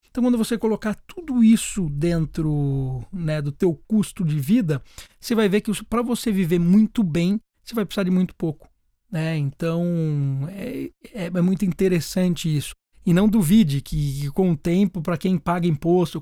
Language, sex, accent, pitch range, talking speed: Portuguese, male, Brazilian, 155-200 Hz, 175 wpm